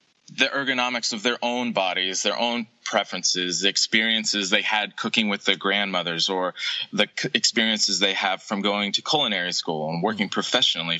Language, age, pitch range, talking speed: English, 20-39, 95-120 Hz, 165 wpm